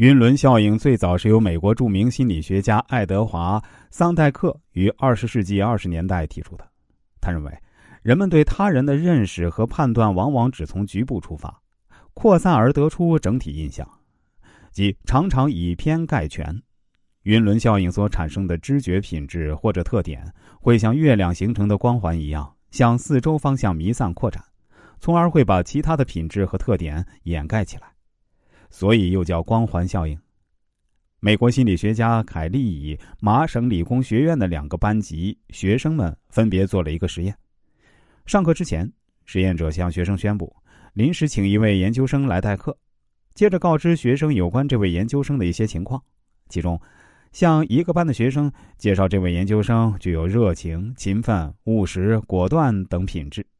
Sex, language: male, Chinese